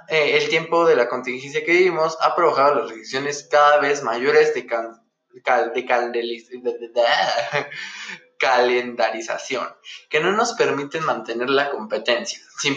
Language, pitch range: Spanish, 130-205 Hz